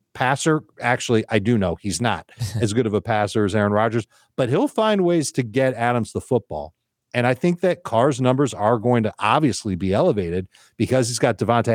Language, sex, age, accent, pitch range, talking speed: English, male, 40-59, American, 100-135 Hz, 205 wpm